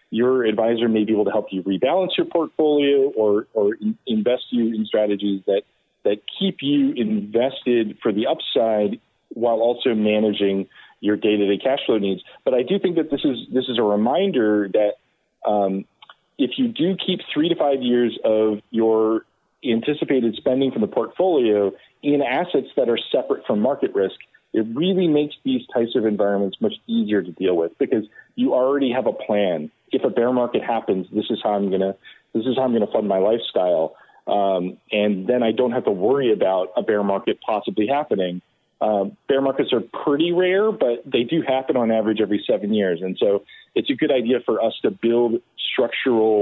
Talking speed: 190 wpm